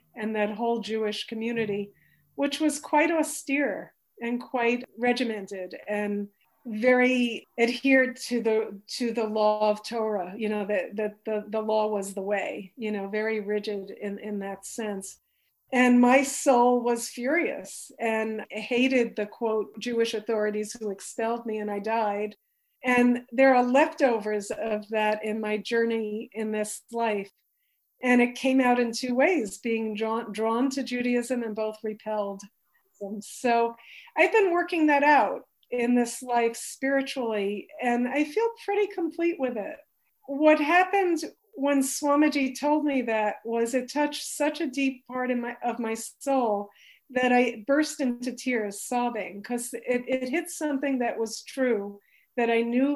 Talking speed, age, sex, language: 150 wpm, 50-69, female, English